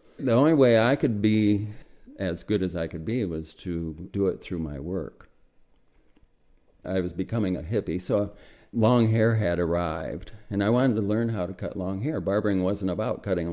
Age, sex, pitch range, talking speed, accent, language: 50-69, male, 90-110 Hz, 190 wpm, American, English